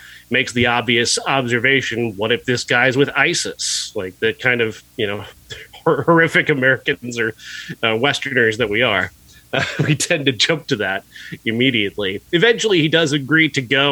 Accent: American